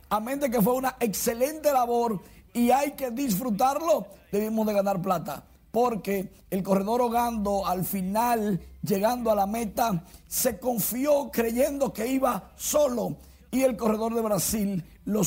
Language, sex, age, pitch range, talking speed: Spanish, male, 50-69, 200-280 Hz, 145 wpm